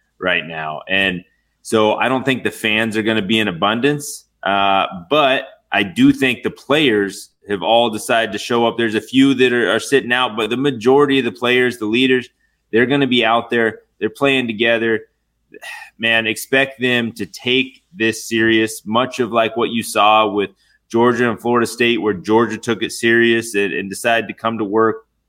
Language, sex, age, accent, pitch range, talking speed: English, male, 20-39, American, 100-120 Hz, 195 wpm